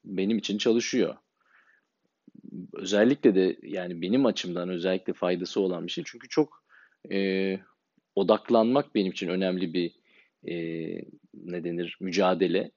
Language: Turkish